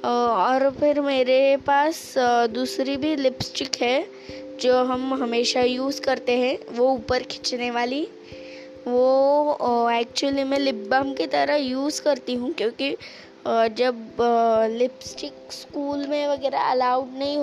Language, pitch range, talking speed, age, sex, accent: Hindi, 245-280 Hz, 125 wpm, 20-39, female, native